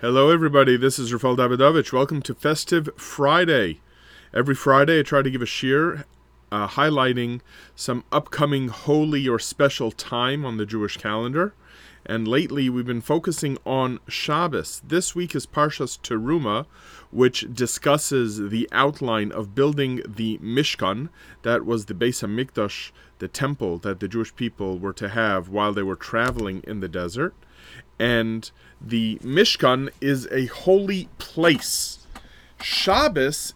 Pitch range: 110-150 Hz